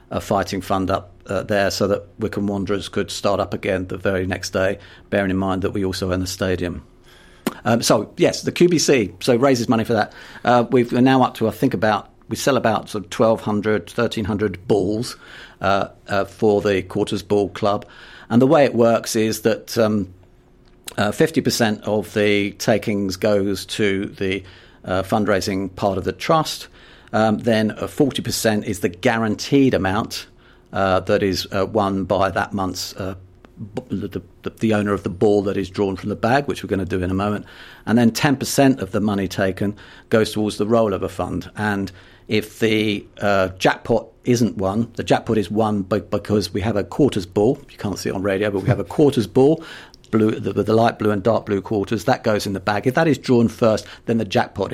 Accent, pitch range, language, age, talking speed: British, 95-115 Hz, English, 50-69, 205 wpm